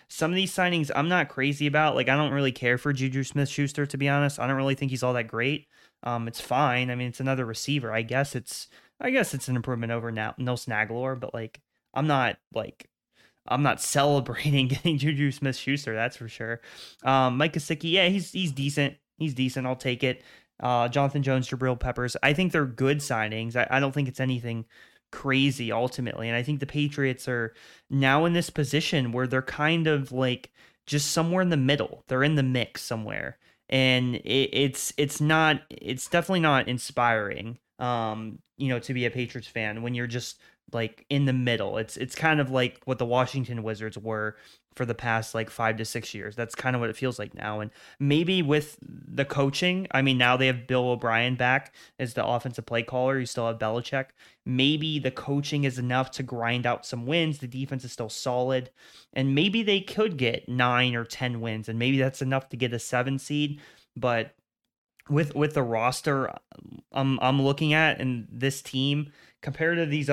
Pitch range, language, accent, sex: 120-145 Hz, English, American, male